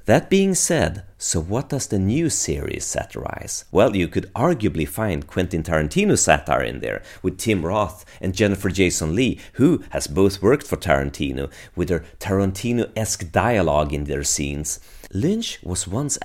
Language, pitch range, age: Swedish, 80-110 Hz, 30-49